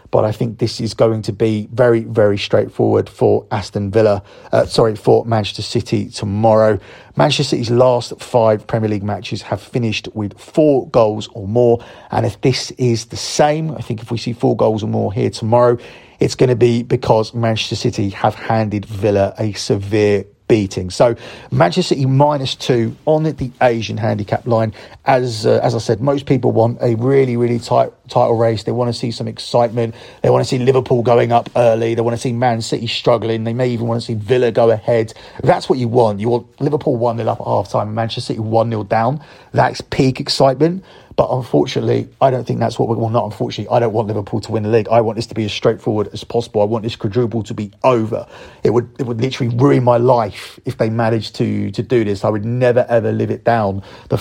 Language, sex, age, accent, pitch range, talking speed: English, male, 40-59, British, 110-125 Hz, 220 wpm